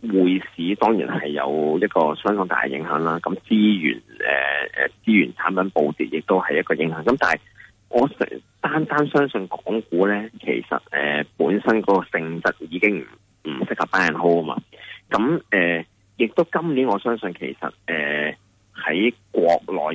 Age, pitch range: 30-49, 85-115 Hz